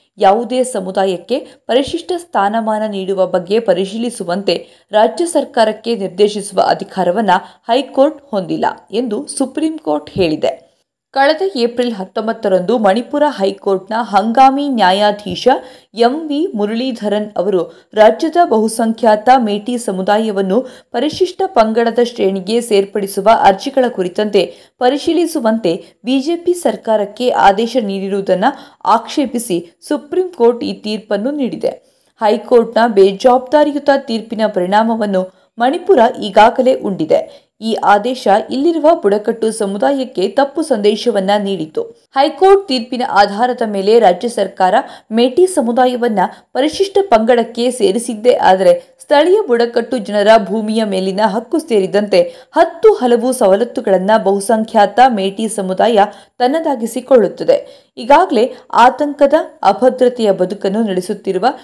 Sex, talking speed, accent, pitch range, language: female, 90 wpm, native, 205-265 Hz, Kannada